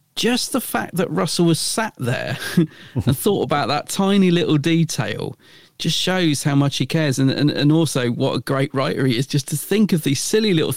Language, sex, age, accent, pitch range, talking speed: English, male, 40-59, British, 125-165 Hz, 210 wpm